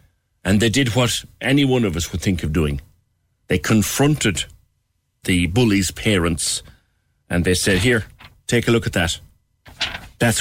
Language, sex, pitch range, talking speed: English, male, 90-115 Hz, 155 wpm